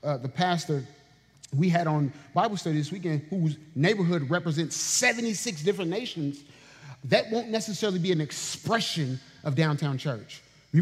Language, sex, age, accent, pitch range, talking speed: English, male, 30-49, American, 145-195 Hz, 145 wpm